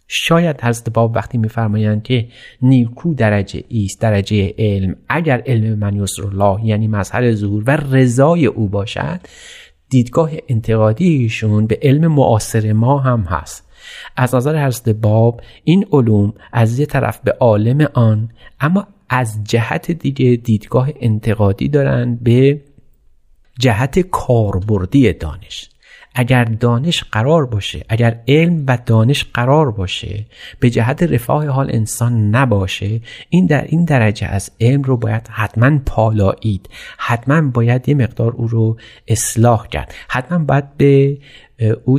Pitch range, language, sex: 105-135 Hz, Persian, male